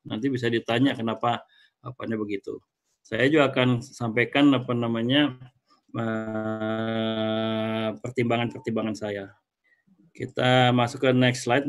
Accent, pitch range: native, 120-145 Hz